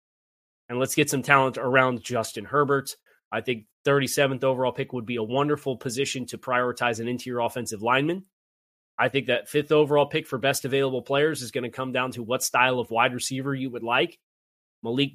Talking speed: 195 wpm